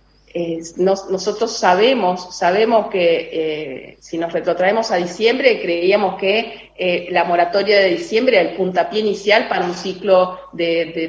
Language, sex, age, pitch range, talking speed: Spanish, female, 40-59, 180-215 Hz, 145 wpm